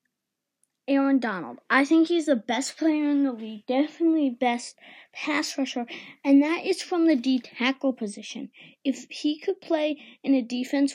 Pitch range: 245-295 Hz